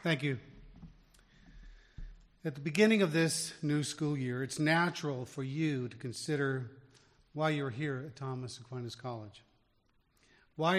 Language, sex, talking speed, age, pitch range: English, male, 135 wpm, 50-69, 125-160 Hz